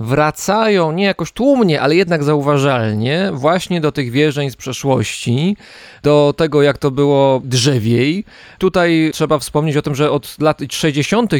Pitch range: 135-170 Hz